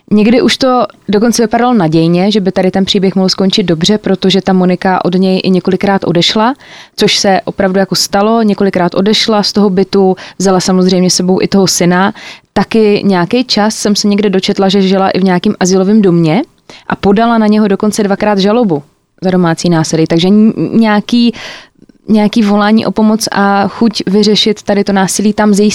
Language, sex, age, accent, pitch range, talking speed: Czech, female, 20-39, native, 185-210 Hz, 180 wpm